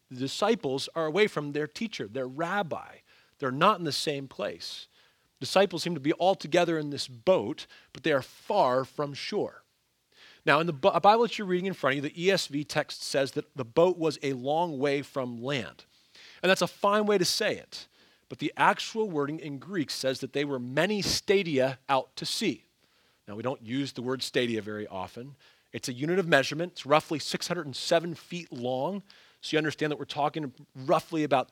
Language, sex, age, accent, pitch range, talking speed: English, male, 40-59, American, 130-180 Hz, 200 wpm